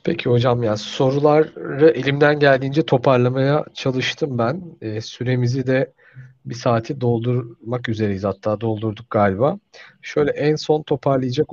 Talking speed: 120 wpm